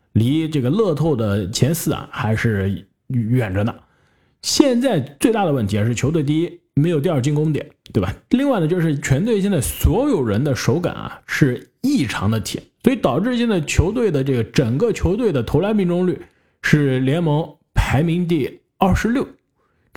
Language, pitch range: Chinese, 115-175 Hz